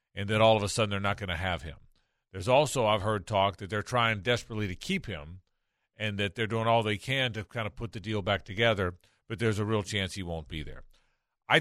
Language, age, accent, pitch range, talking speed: English, 40-59, American, 100-125 Hz, 255 wpm